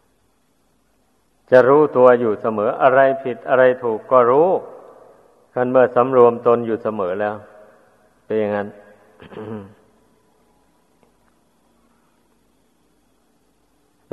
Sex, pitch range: male, 110-130 Hz